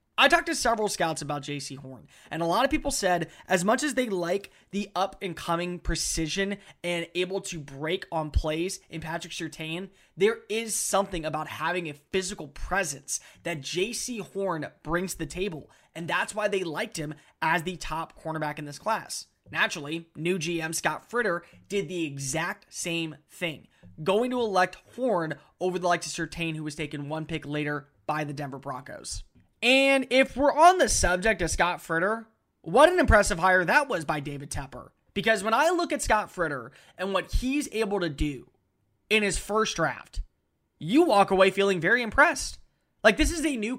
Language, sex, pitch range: English, male, 160-220 Hz